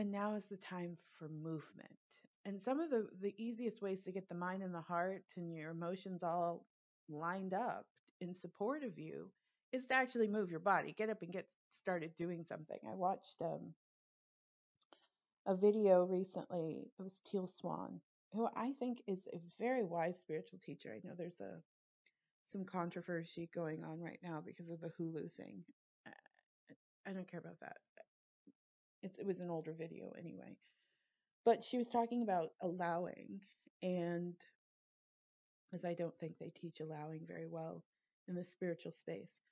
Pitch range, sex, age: 170-210 Hz, female, 30-49